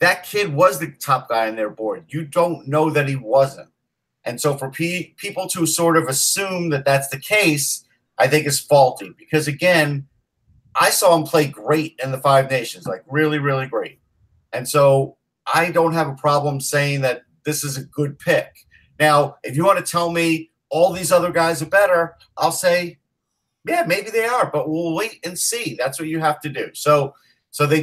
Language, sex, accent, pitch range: English, male, American, 140-170 Hz